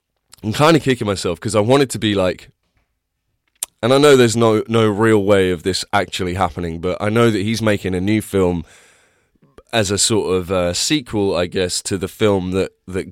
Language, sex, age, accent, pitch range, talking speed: English, male, 20-39, British, 90-110 Hz, 205 wpm